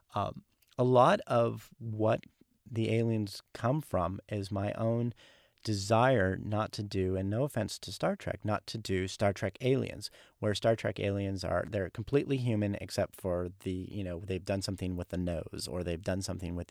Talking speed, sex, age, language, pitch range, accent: 185 wpm, male, 40-59, English, 95-115 Hz, American